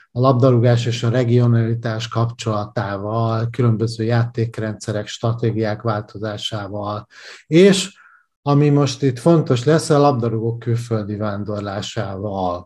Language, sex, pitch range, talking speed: Hungarian, male, 115-140 Hz, 95 wpm